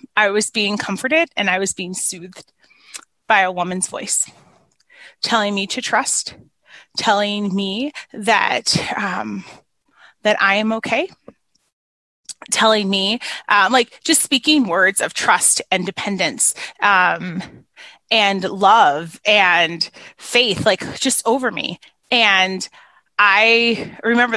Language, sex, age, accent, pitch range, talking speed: English, female, 30-49, American, 185-250 Hz, 120 wpm